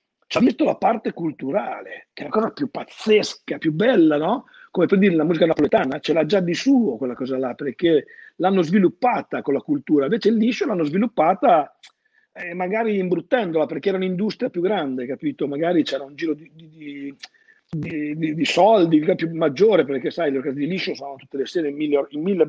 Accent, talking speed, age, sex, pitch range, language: native, 195 wpm, 50-69, male, 150-230 Hz, Italian